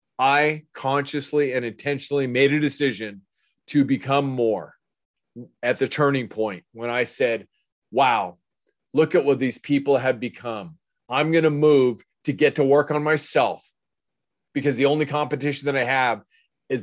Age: 30-49